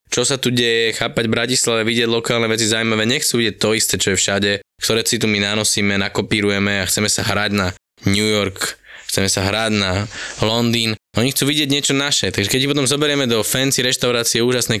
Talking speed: 200 wpm